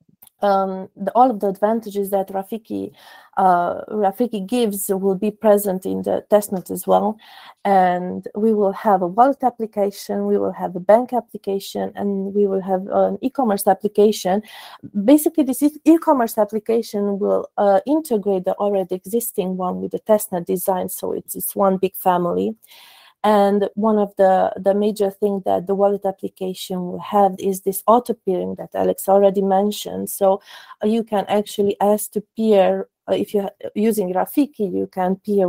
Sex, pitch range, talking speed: female, 190-215 Hz, 160 wpm